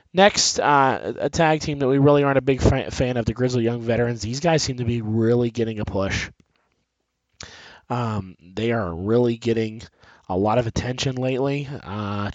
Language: English